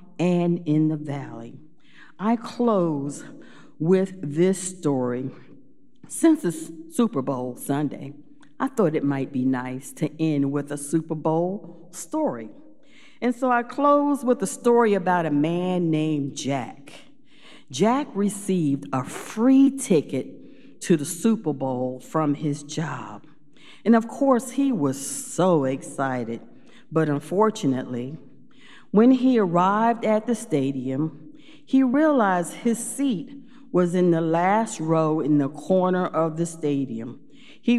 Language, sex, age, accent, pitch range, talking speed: English, female, 50-69, American, 150-230 Hz, 130 wpm